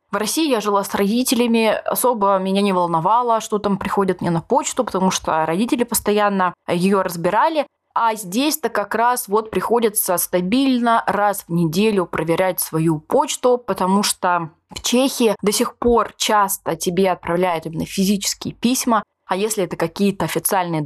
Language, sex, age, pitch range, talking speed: Russian, female, 20-39, 175-230 Hz, 150 wpm